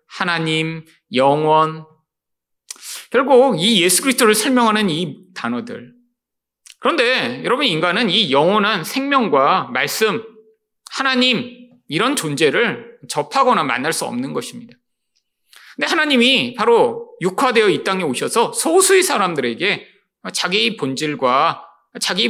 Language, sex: Korean, male